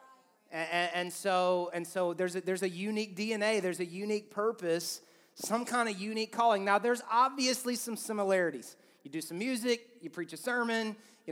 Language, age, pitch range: English, 30-49, 170-215 Hz